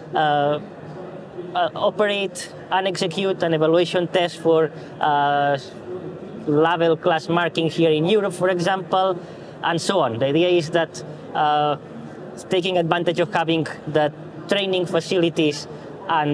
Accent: Spanish